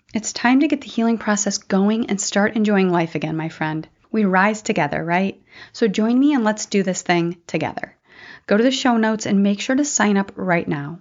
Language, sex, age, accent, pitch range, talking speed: English, female, 30-49, American, 175-230 Hz, 225 wpm